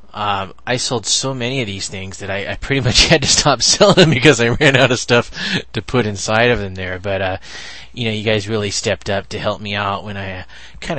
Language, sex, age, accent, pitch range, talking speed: English, male, 20-39, American, 100-120 Hz, 250 wpm